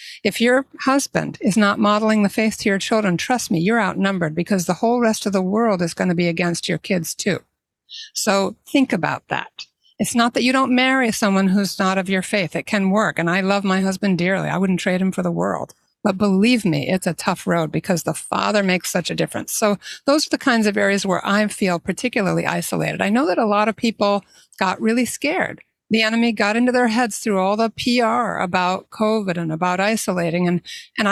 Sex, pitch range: female, 180-225 Hz